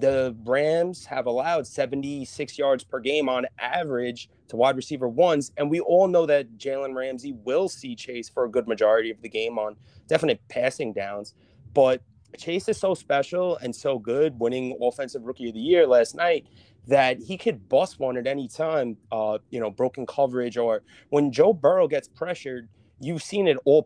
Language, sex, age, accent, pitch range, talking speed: English, male, 30-49, American, 120-150 Hz, 185 wpm